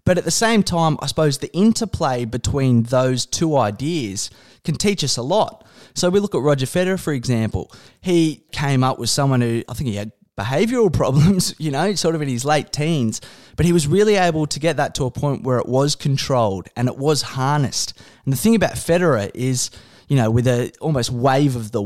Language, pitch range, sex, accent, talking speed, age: English, 120-155 Hz, male, Australian, 215 wpm, 20-39